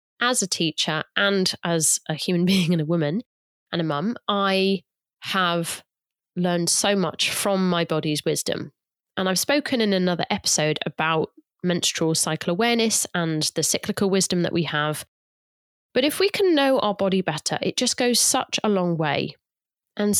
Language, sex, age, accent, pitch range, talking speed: English, female, 30-49, British, 160-200 Hz, 165 wpm